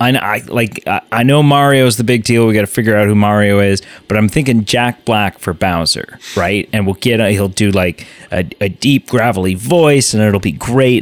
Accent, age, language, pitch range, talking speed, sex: American, 30-49, English, 110-170 Hz, 225 wpm, male